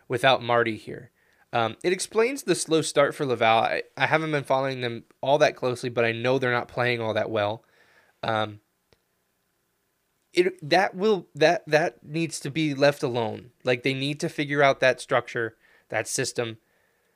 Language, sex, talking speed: English, male, 175 wpm